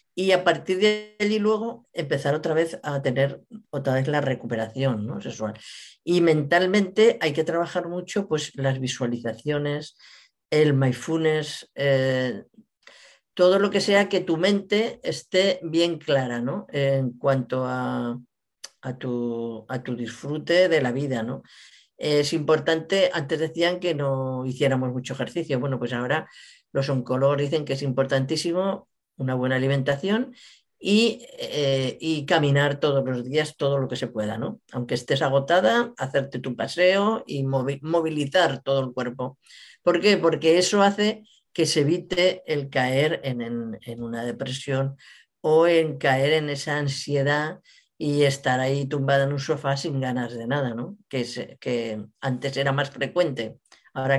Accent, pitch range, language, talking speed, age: Spanish, 130-175 Hz, Spanish, 155 wpm, 40-59